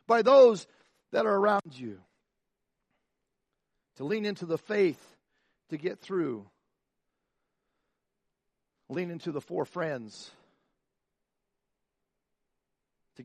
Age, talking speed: 50-69, 90 wpm